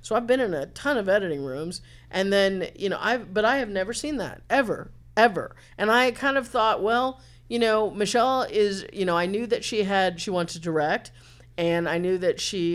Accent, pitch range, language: American, 155-200 Hz, English